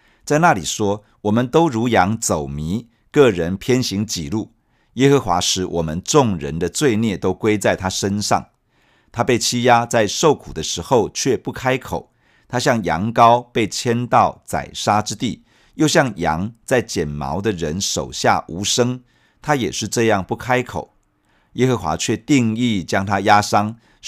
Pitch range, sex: 90-120 Hz, male